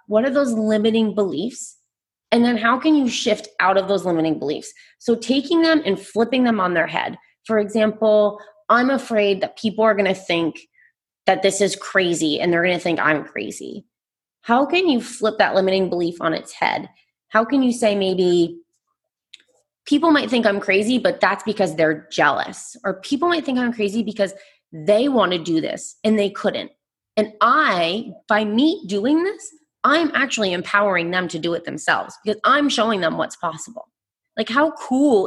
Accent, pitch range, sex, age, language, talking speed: American, 190-275 Hz, female, 20-39, English, 180 wpm